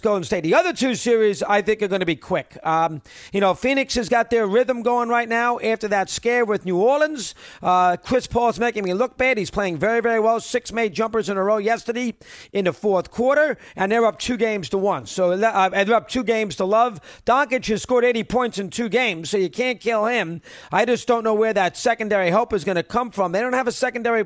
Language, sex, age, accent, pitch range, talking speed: English, male, 40-59, American, 200-240 Hz, 245 wpm